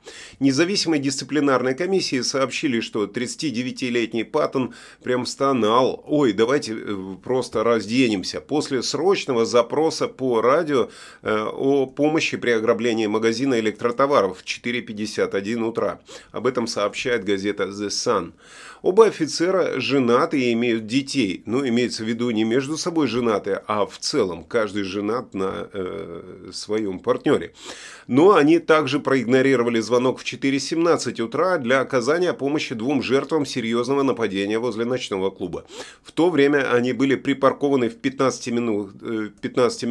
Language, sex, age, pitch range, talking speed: Russian, male, 30-49, 115-140 Hz, 125 wpm